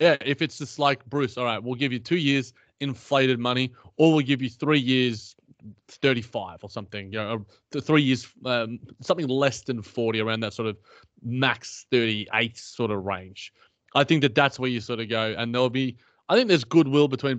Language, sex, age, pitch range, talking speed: English, male, 20-39, 115-140 Hz, 205 wpm